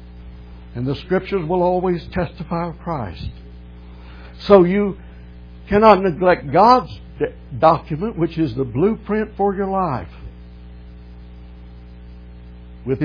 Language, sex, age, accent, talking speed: English, male, 60-79, American, 100 wpm